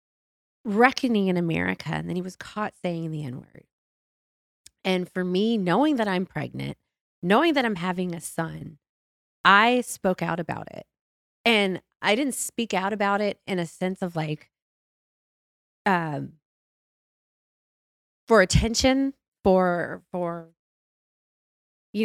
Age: 30-49